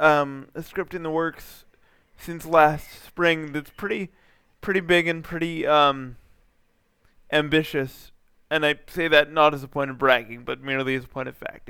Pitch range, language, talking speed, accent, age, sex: 145-175 Hz, English, 170 wpm, American, 20-39, male